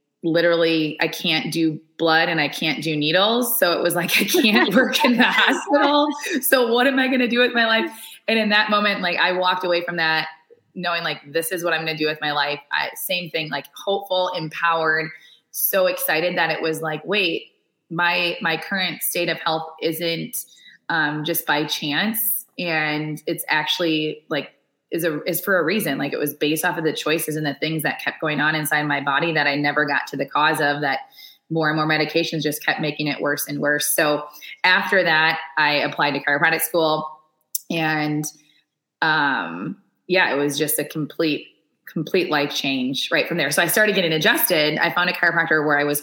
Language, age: English, 20-39